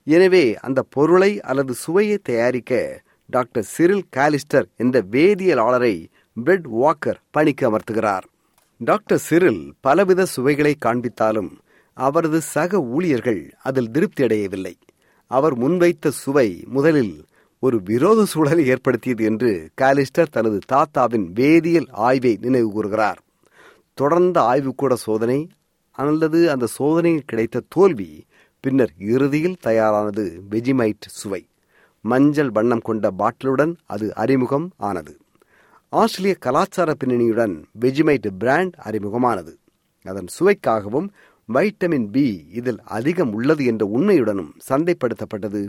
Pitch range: 115-160 Hz